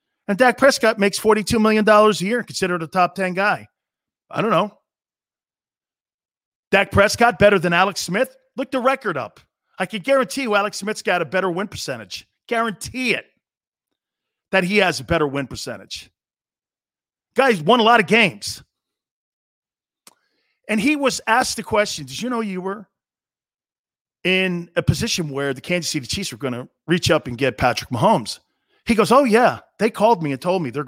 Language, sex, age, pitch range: English, male, 40-59, 170-230 Hz